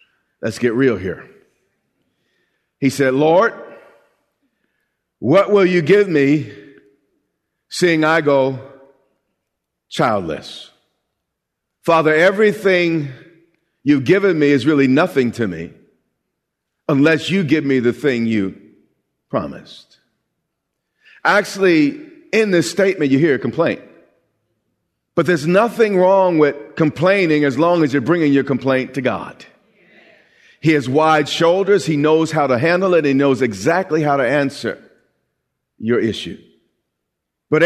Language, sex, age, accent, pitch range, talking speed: English, male, 50-69, American, 140-185 Hz, 120 wpm